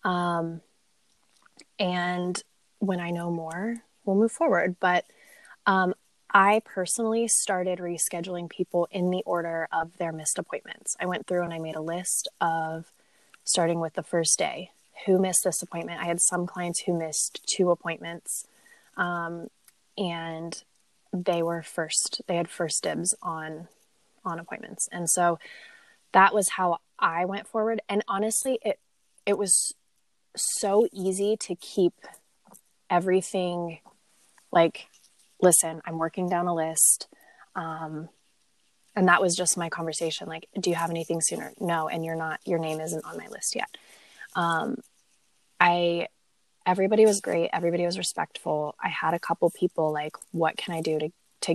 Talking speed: 150 wpm